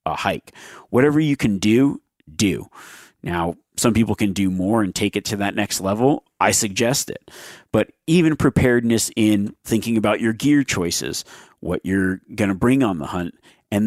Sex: male